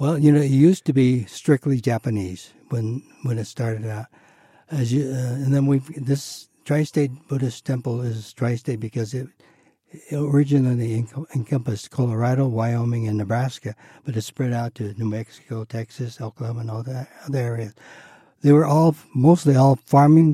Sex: male